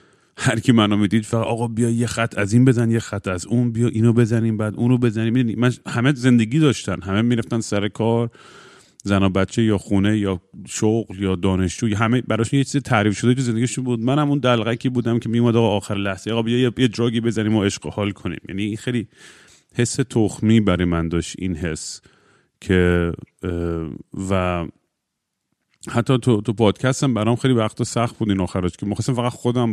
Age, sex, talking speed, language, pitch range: 30-49, male, 180 wpm, Persian, 95-120 Hz